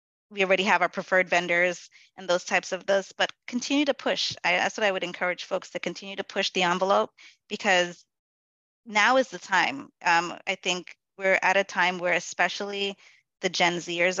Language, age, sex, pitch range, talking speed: English, 20-39, female, 165-195 Hz, 190 wpm